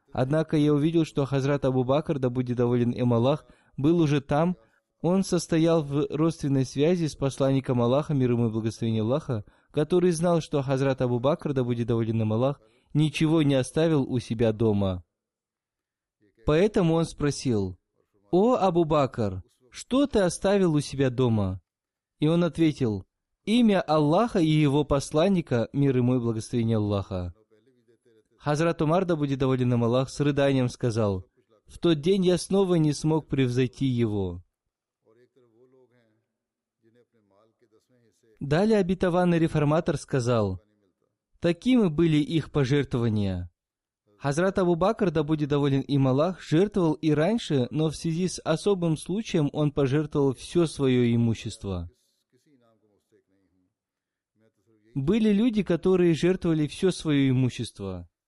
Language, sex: Russian, male